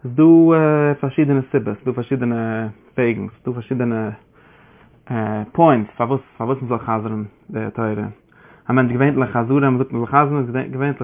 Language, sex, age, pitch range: English, male, 20-39, 115-140 Hz